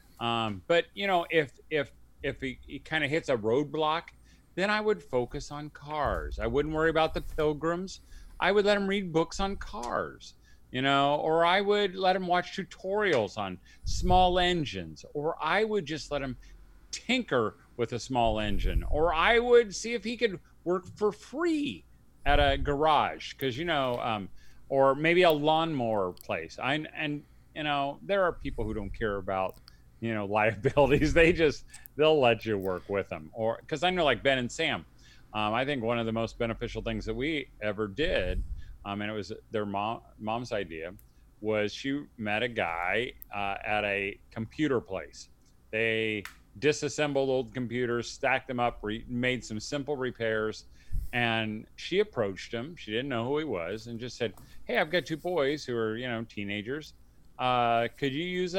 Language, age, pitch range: English, 40-59, 110-160 Hz